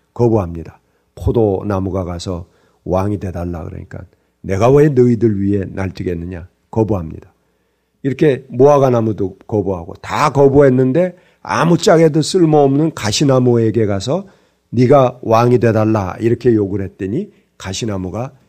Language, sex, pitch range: Korean, male, 95-135 Hz